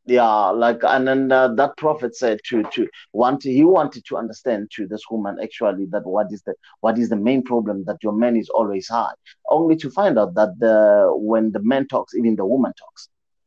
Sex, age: male, 30-49